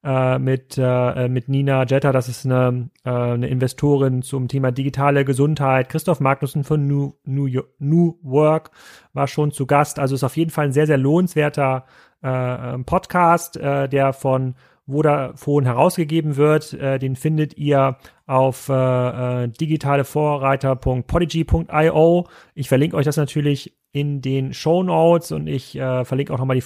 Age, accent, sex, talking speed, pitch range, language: 30-49, German, male, 150 wpm, 130-155 Hz, German